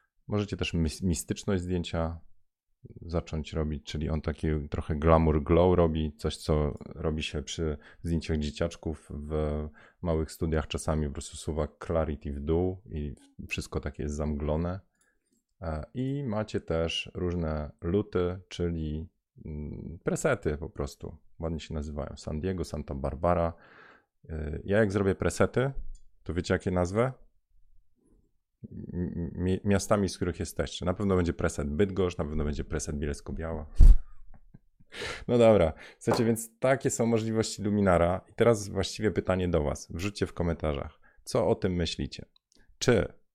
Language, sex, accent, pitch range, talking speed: Polish, male, native, 75-95 Hz, 135 wpm